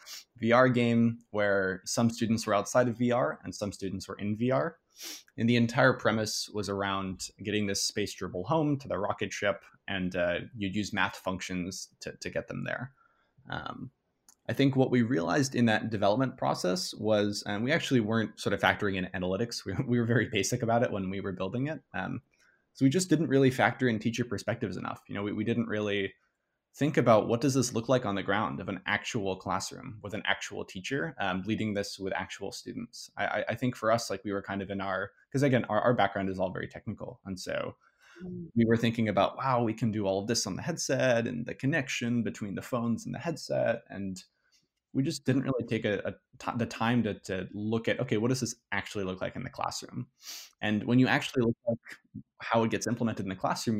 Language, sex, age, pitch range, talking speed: English, male, 20-39, 100-120 Hz, 220 wpm